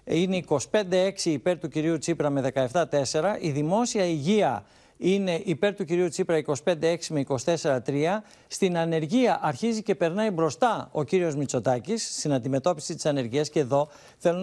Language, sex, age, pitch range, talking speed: Greek, male, 60-79, 145-195 Hz, 145 wpm